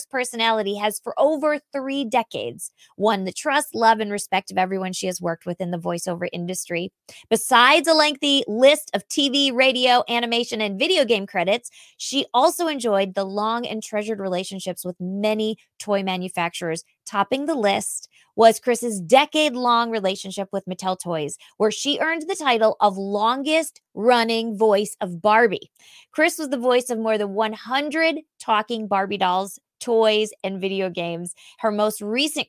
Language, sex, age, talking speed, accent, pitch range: English, female, 20-39, 160 wpm, American, 195-270 Hz